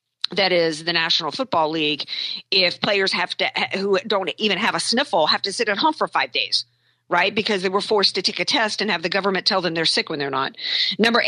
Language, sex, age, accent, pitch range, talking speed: English, female, 50-69, American, 170-215 Hz, 245 wpm